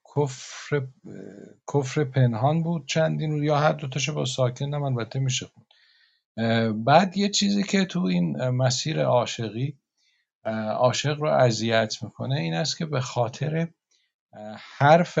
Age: 50-69